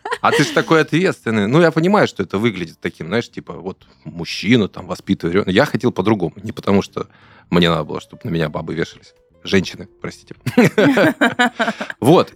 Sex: male